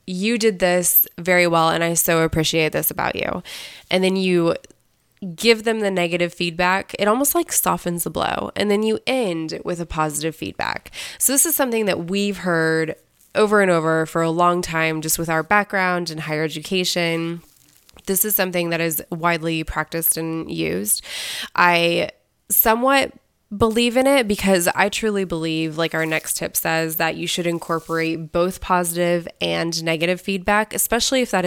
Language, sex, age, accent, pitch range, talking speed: English, female, 20-39, American, 165-205 Hz, 170 wpm